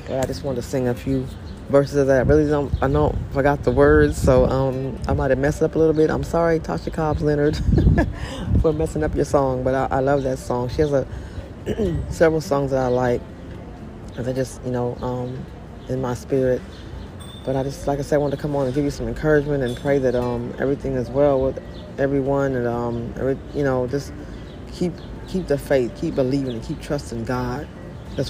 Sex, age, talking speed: female, 20-39, 220 wpm